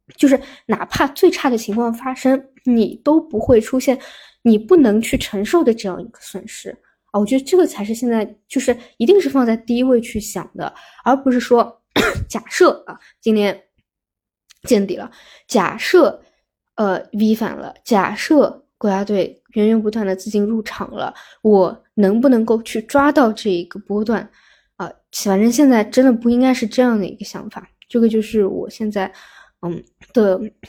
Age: 10-29